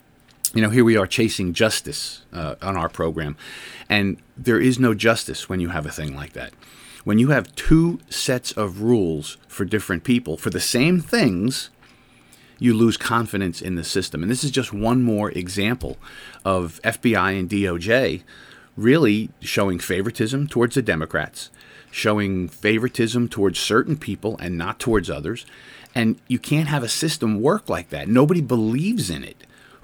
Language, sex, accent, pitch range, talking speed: English, male, American, 90-125 Hz, 165 wpm